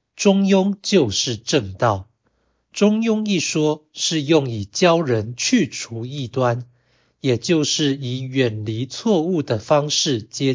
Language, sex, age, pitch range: Chinese, male, 60-79, 115-150 Hz